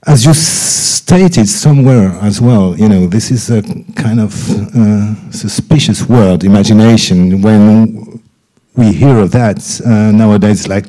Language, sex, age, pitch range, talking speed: German, male, 50-69, 100-120 Hz, 140 wpm